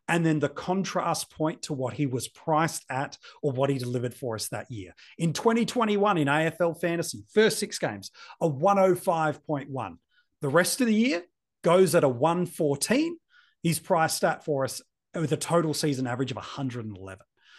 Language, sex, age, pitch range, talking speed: English, male, 30-49, 145-200 Hz, 170 wpm